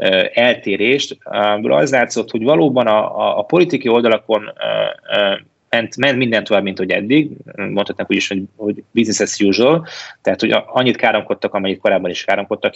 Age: 30-49